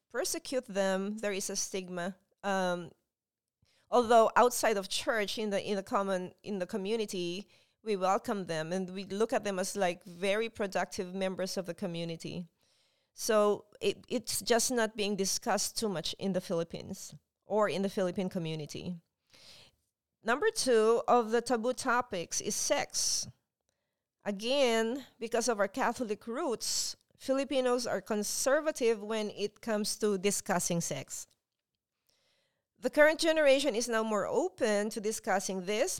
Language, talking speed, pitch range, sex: English, 140 wpm, 190-240 Hz, female